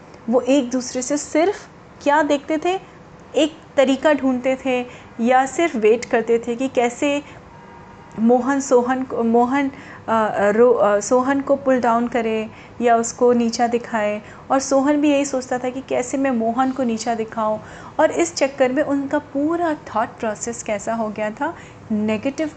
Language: Hindi